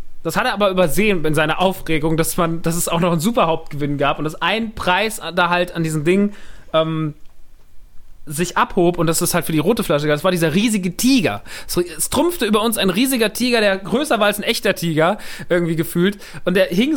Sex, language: male, German